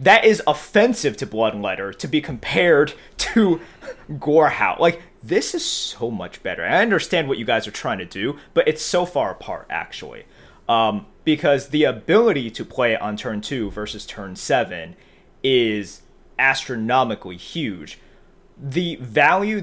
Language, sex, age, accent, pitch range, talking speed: English, male, 30-49, American, 115-180 Hz, 145 wpm